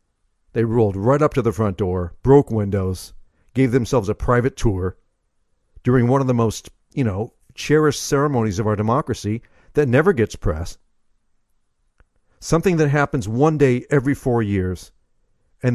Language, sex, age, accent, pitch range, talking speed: English, male, 50-69, American, 95-125 Hz, 150 wpm